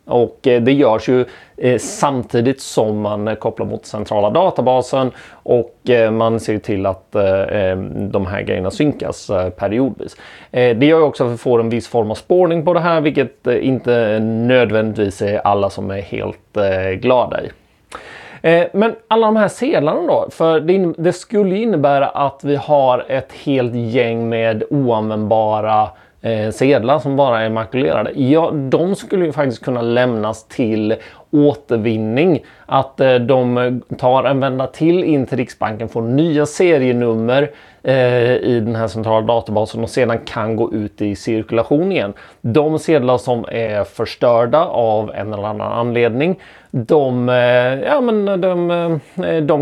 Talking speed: 145 wpm